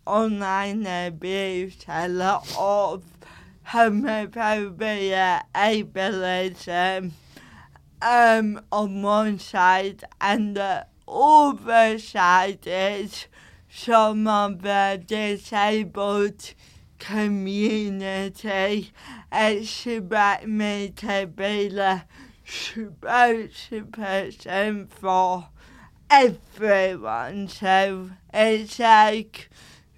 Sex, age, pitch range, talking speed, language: female, 20-39, 185-215 Hz, 70 wpm, English